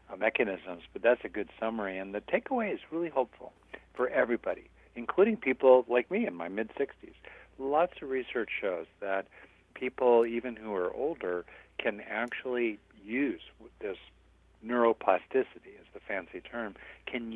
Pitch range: 105-140 Hz